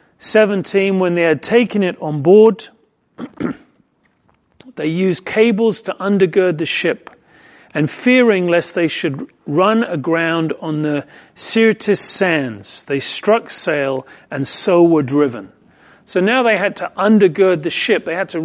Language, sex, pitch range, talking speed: English, male, 160-210 Hz, 145 wpm